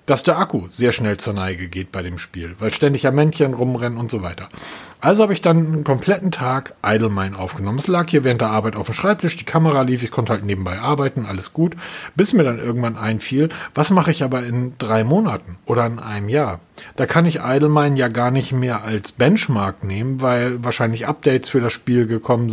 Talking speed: 220 wpm